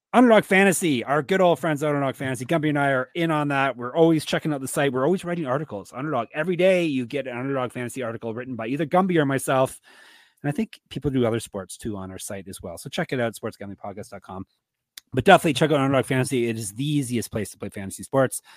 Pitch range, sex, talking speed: 125-160 Hz, male, 235 wpm